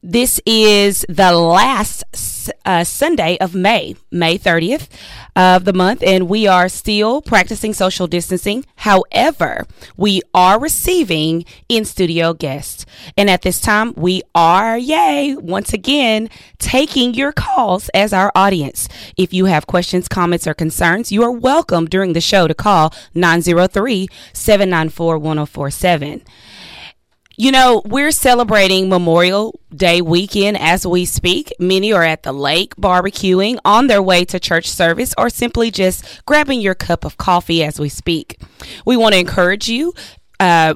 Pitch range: 170-220 Hz